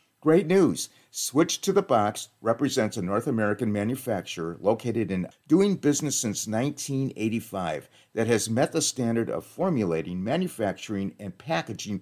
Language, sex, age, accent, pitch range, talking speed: English, male, 50-69, American, 105-145 Hz, 135 wpm